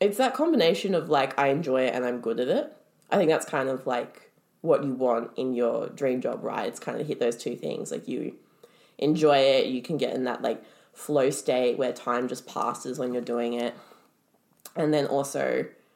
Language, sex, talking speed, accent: English, female, 215 wpm, Australian